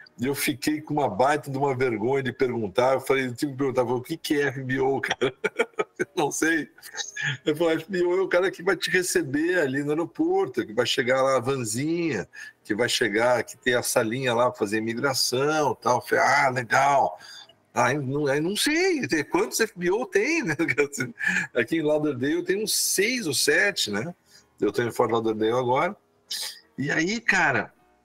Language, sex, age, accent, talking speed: Portuguese, male, 60-79, Brazilian, 195 wpm